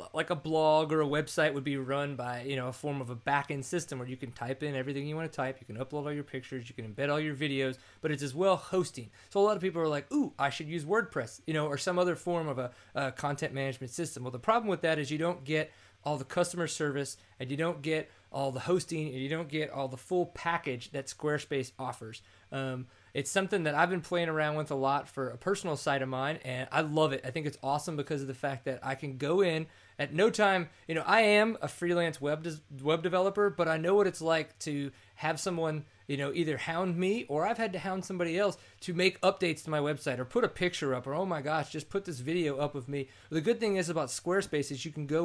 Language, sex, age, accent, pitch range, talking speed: English, male, 20-39, American, 135-170 Hz, 265 wpm